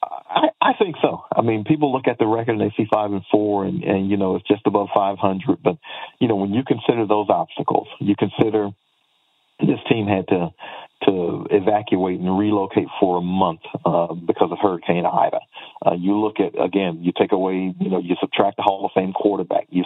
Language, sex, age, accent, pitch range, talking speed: English, male, 50-69, American, 95-105 Hz, 210 wpm